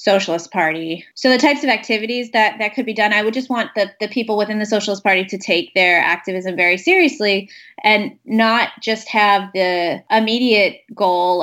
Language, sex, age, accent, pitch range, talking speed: English, female, 20-39, American, 180-225 Hz, 190 wpm